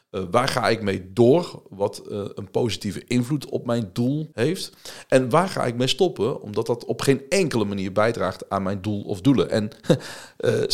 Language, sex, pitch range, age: Dutch, male, 100-140 Hz, 40-59